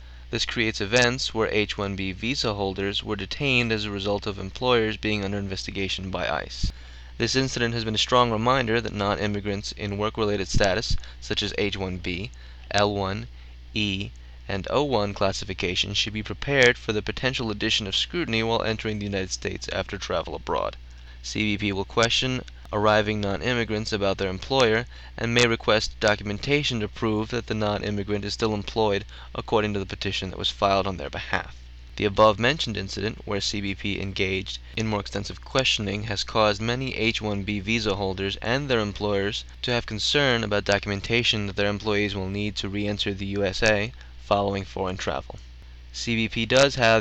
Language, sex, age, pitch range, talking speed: English, male, 20-39, 95-110 Hz, 165 wpm